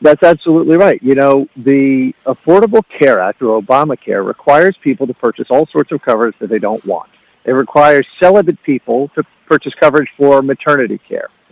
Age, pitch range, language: 50-69, 140-180 Hz, English